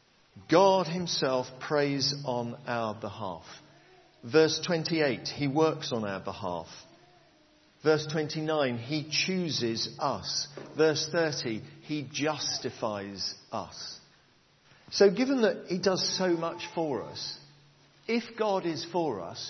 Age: 50-69